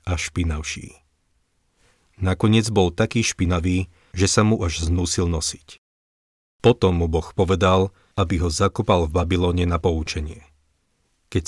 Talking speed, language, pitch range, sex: 125 wpm, Slovak, 85-100 Hz, male